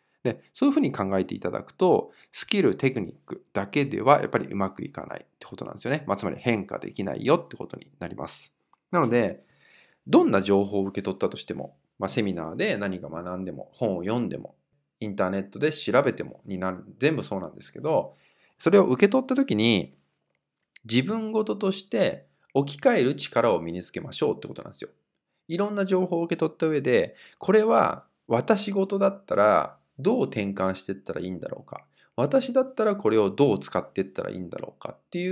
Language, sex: Japanese, male